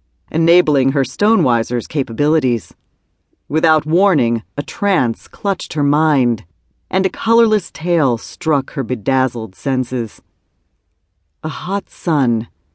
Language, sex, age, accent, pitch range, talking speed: English, female, 40-59, American, 115-175 Hz, 105 wpm